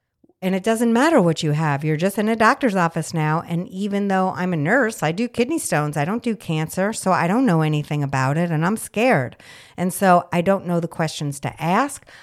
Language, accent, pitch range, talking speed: English, American, 145-185 Hz, 230 wpm